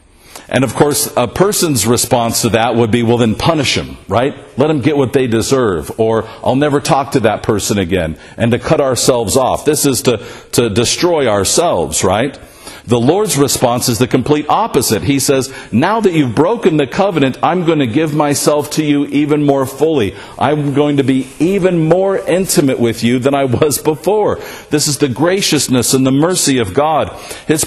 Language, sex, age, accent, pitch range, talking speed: English, male, 50-69, American, 115-150 Hz, 195 wpm